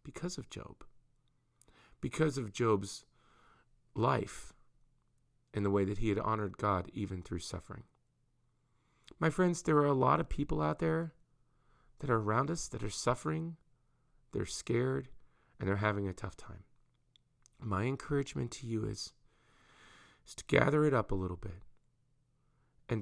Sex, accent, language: male, American, English